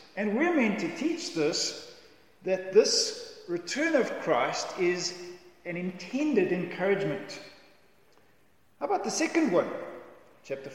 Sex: male